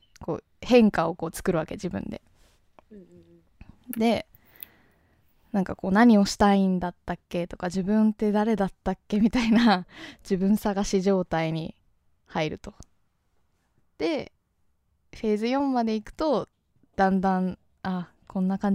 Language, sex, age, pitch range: Japanese, female, 20-39, 170-205 Hz